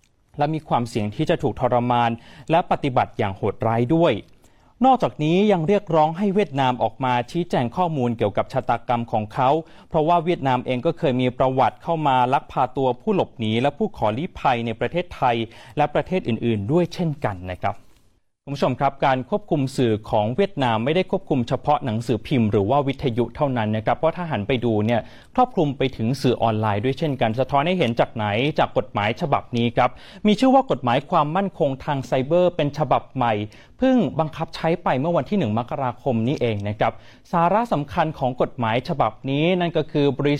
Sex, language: male, Thai